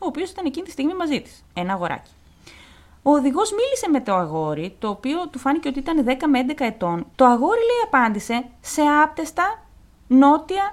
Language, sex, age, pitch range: Greek, female, 30-49, 205-335 Hz